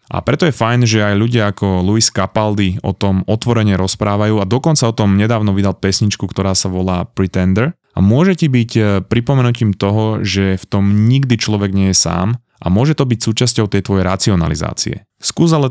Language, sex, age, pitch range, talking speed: Slovak, male, 30-49, 95-115 Hz, 185 wpm